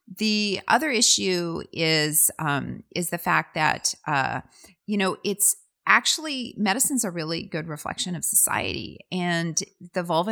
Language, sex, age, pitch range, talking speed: Dutch, female, 30-49, 160-205 Hz, 140 wpm